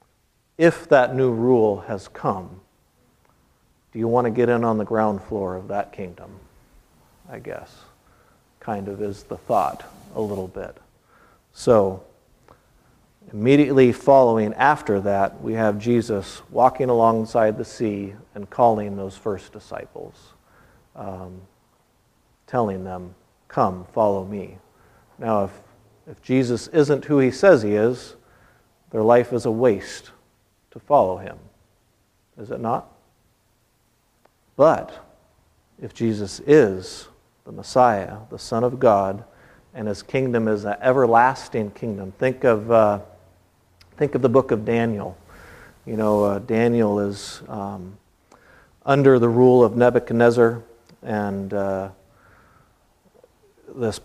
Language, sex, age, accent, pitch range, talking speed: English, male, 50-69, American, 100-120 Hz, 125 wpm